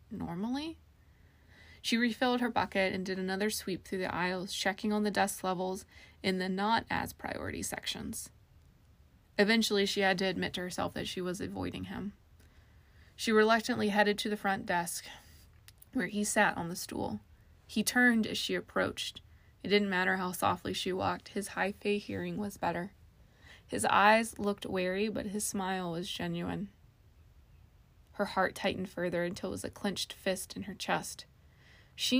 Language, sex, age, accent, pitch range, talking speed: English, female, 20-39, American, 175-210 Hz, 165 wpm